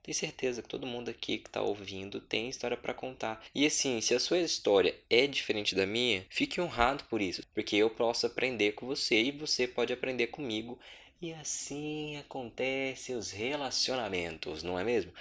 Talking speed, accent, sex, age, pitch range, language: 180 wpm, Brazilian, male, 20-39, 100-135 Hz, Portuguese